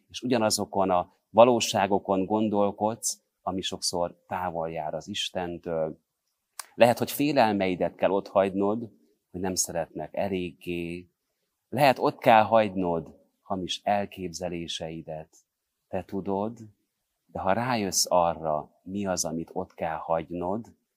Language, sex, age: Hungarian, male, 30-49